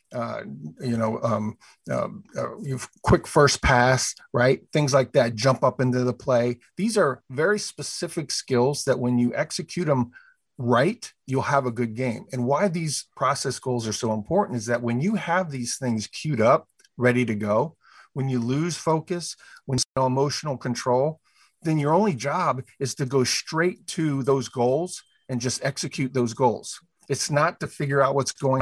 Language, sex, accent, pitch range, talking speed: English, male, American, 120-150 Hz, 180 wpm